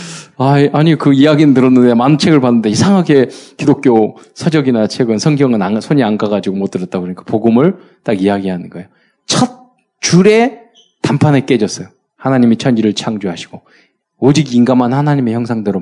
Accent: native